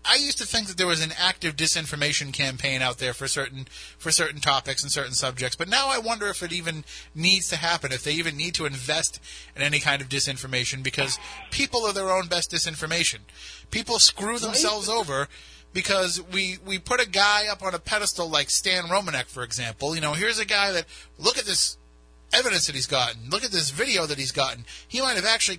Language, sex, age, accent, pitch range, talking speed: English, male, 30-49, American, 140-190 Hz, 220 wpm